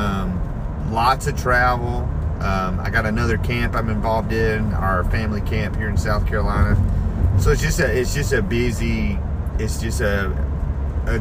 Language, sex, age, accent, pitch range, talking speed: English, male, 40-59, American, 85-105 Hz, 150 wpm